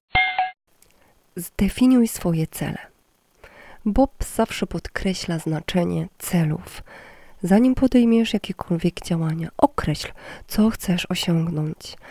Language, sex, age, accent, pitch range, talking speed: Polish, female, 20-39, native, 175-215 Hz, 80 wpm